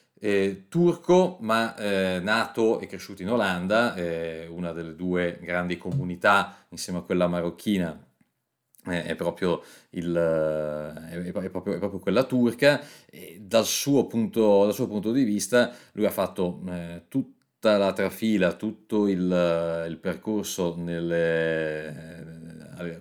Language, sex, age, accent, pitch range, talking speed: Italian, male, 40-59, native, 90-115 Hz, 140 wpm